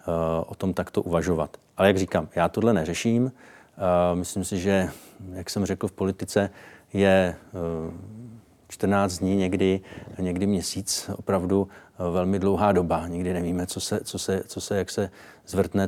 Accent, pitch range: native, 95-105 Hz